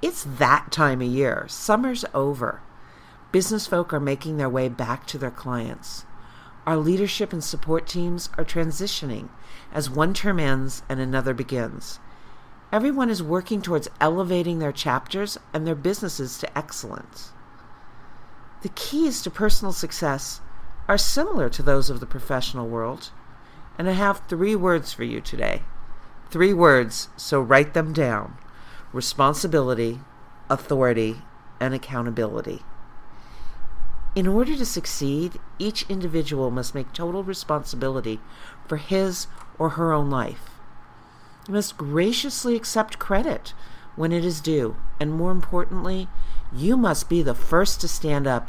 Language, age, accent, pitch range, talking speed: English, 50-69, American, 130-180 Hz, 135 wpm